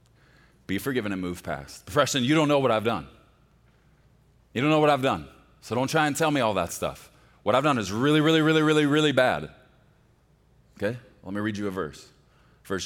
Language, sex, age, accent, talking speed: English, male, 40-59, American, 215 wpm